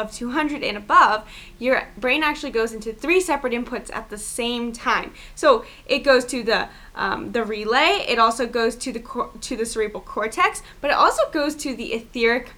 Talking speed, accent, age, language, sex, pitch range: 185 wpm, American, 10-29, English, female, 225-295 Hz